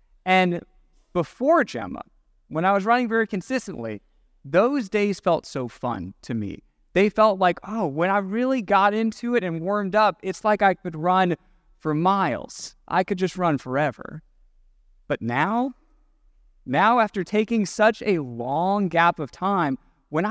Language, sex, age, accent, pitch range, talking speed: English, male, 30-49, American, 175-245 Hz, 155 wpm